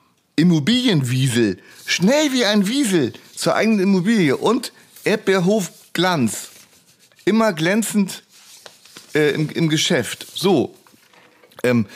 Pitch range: 135-190 Hz